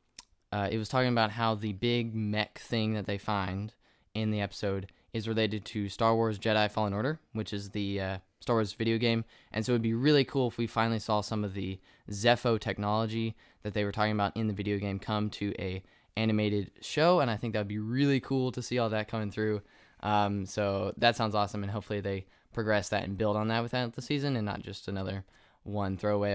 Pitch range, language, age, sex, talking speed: 100-120 Hz, English, 20-39, male, 225 wpm